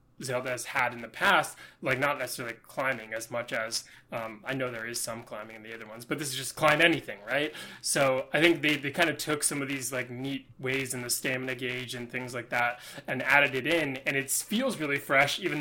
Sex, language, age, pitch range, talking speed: male, English, 20-39, 125-145 Hz, 240 wpm